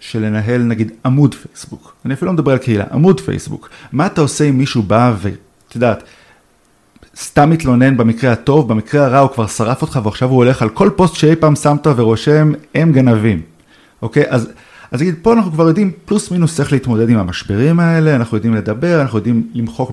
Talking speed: 190 wpm